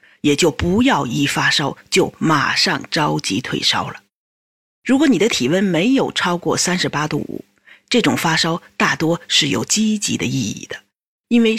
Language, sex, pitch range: Chinese, female, 165-255 Hz